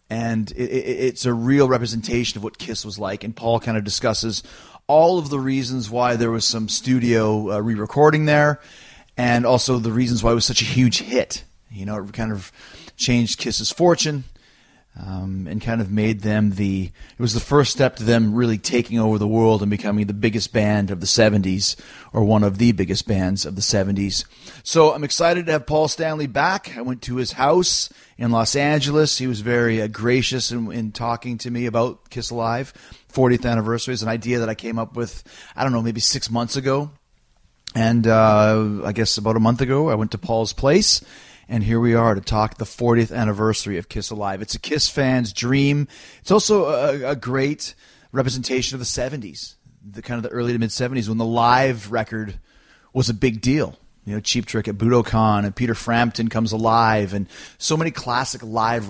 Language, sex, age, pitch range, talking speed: English, male, 30-49, 110-130 Hz, 200 wpm